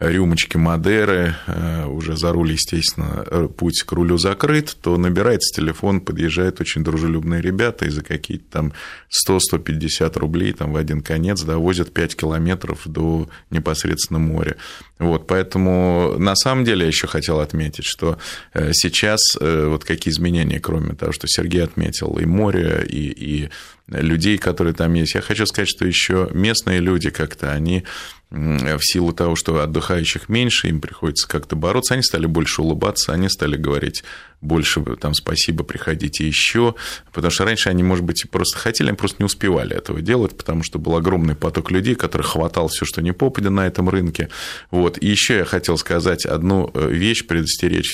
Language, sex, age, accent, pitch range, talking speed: Russian, male, 20-39, native, 80-95 Hz, 160 wpm